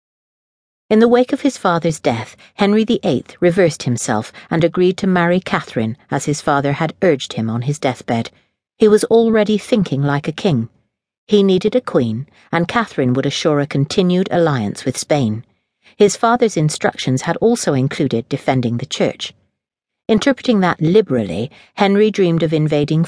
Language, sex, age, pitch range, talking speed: English, female, 50-69, 130-190 Hz, 160 wpm